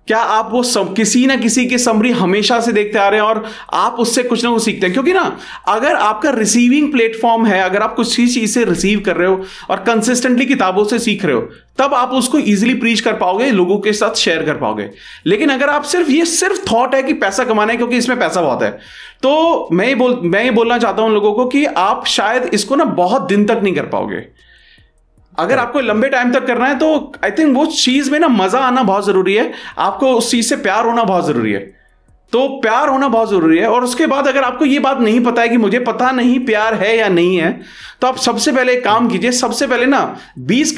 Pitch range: 215-265 Hz